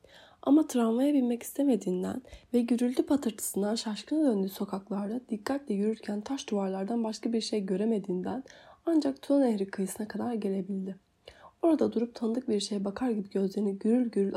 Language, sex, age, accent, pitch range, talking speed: Turkish, female, 30-49, native, 195-245 Hz, 140 wpm